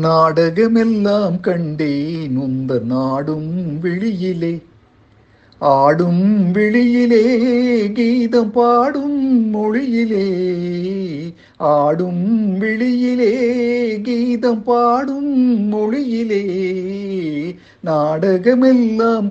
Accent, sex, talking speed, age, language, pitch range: native, male, 50 wpm, 50-69, Tamil, 165-235 Hz